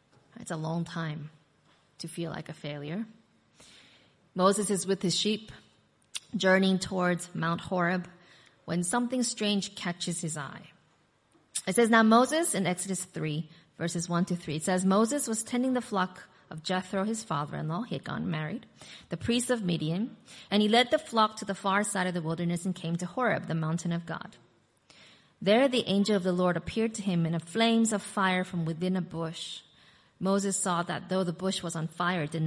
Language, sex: English, female